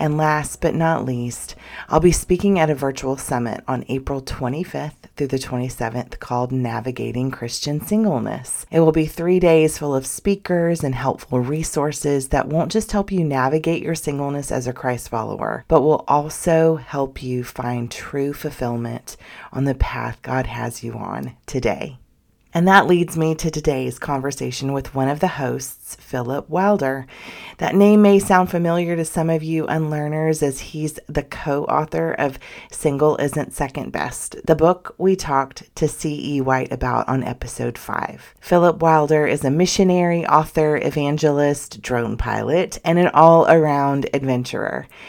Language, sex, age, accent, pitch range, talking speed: English, female, 30-49, American, 130-160 Hz, 160 wpm